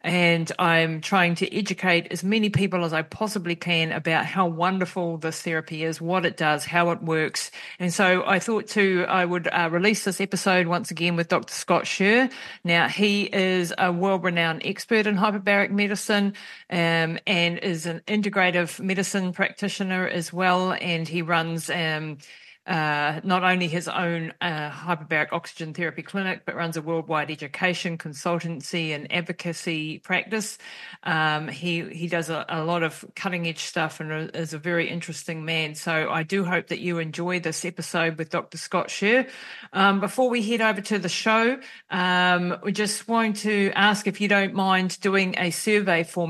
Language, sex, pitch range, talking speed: English, female, 165-195 Hz, 170 wpm